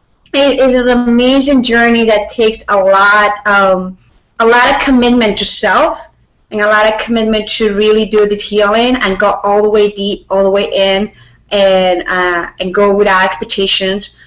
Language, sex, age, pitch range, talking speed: English, female, 30-49, 185-215 Hz, 175 wpm